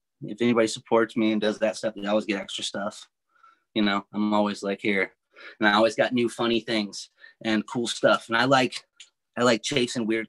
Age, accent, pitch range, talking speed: 30-49, American, 105-125 Hz, 210 wpm